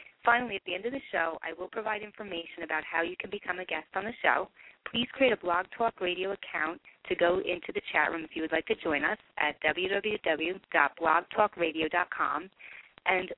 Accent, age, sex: American, 30-49, female